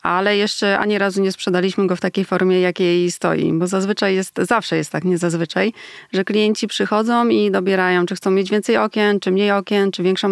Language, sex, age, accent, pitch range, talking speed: Polish, female, 30-49, native, 180-200 Hz, 200 wpm